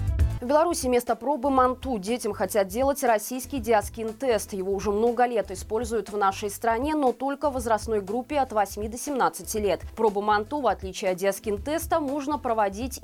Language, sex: Russian, female